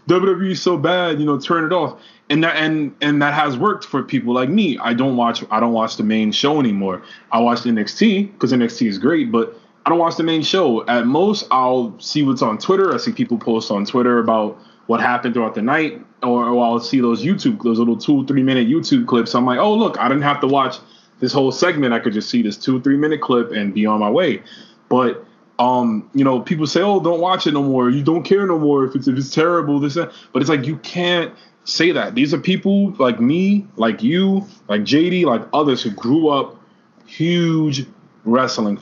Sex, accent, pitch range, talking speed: male, American, 120-175 Hz, 230 wpm